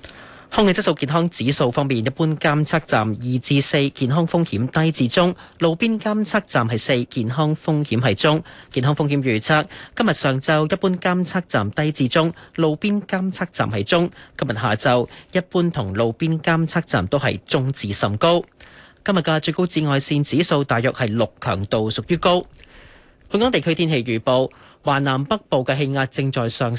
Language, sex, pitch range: Chinese, male, 125-170 Hz